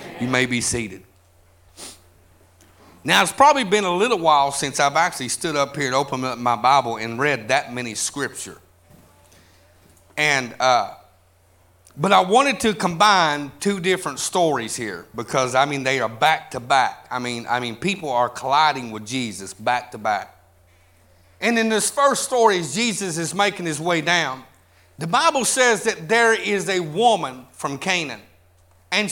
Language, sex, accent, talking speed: English, male, American, 165 wpm